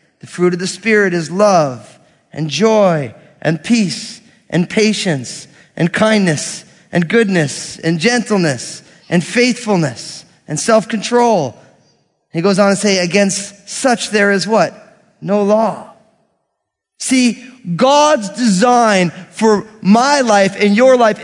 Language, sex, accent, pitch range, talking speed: English, male, American, 190-245 Hz, 125 wpm